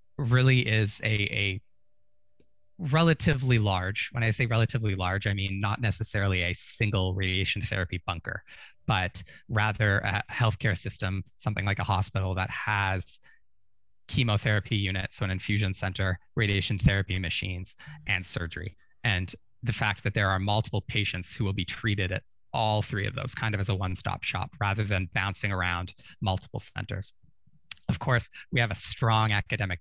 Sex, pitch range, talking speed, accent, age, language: male, 95-110 Hz, 155 wpm, American, 20-39, English